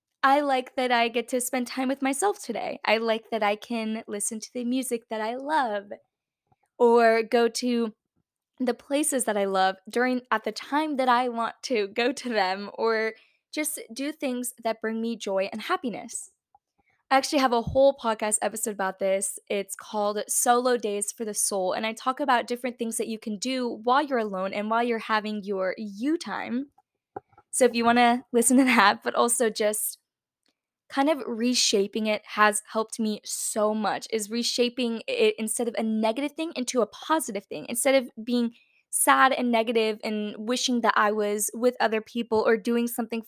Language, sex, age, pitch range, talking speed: English, female, 10-29, 215-250 Hz, 190 wpm